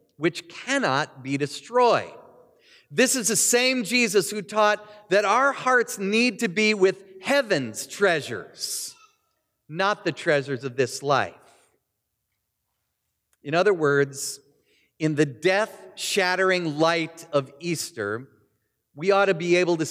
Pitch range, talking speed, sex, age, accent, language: 145-195 Hz, 125 wpm, male, 40-59, American, English